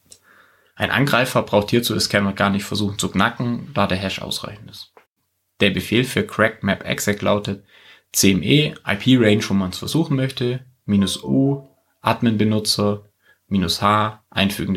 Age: 30-49